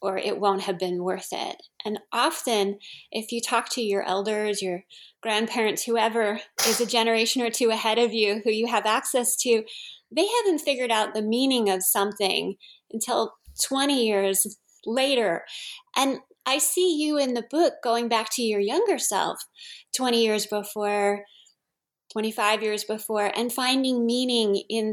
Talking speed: 160 wpm